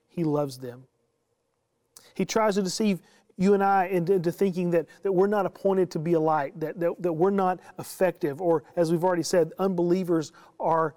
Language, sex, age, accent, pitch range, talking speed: English, male, 40-59, American, 160-200 Hz, 180 wpm